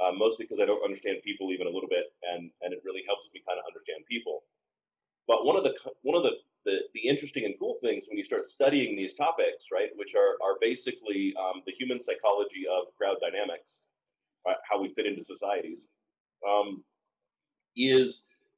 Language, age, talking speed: English, 30-49, 195 wpm